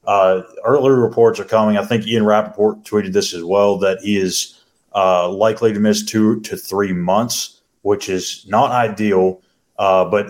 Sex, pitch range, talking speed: male, 95-115 Hz, 175 wpm